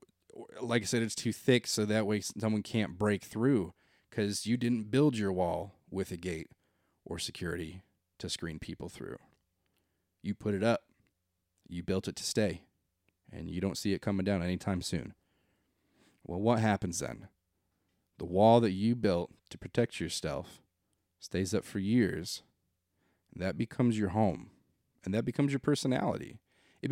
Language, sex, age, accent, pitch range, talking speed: English, male, 30-49, American, 90-115 Hz, 165 wpm